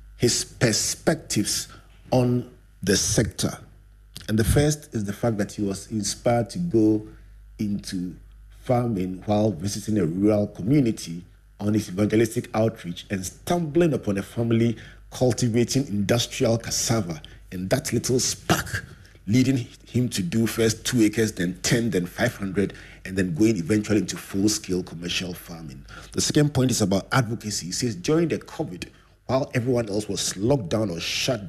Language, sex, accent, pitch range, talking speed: English, male, Nigerian, 95-120 Hz, 150 wpm